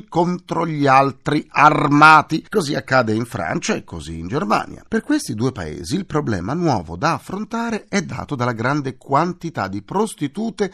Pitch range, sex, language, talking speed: 100-150 Hz, male, Italian, 155 wpm